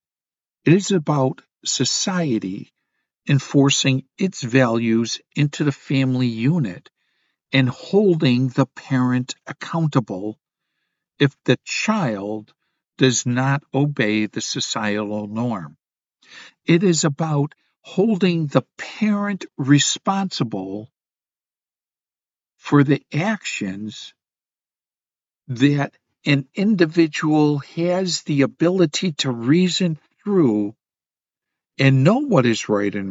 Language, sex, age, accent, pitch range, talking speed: English, male, 60-79, American, 120-165 Hz, 90 wpm